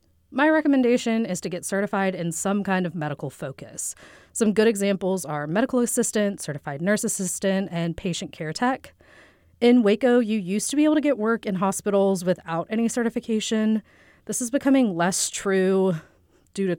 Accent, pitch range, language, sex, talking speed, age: American, 175-230 Hz, English, female, 170 wpm, 30-49